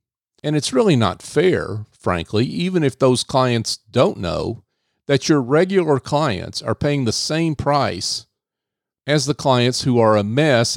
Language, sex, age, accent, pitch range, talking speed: English, male, 50-69, American, 100-135 Hz, 155 wpm